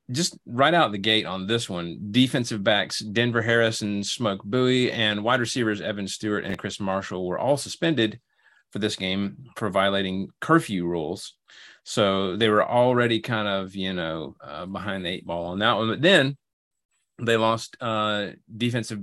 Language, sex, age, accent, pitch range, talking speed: English, male, 30-49, American, 100-120 Hz, 175 wpm